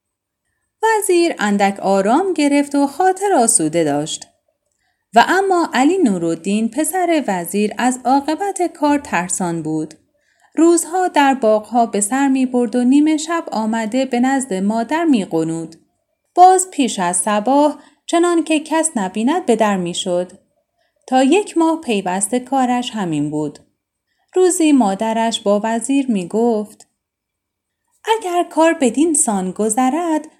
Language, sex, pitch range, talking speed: Persian, female, 200-320 Hz, 130 wpm